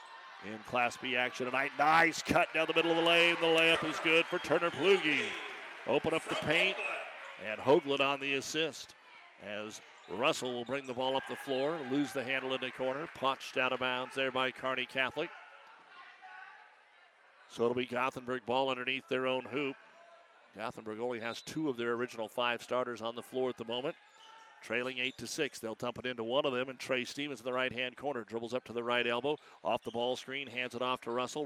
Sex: male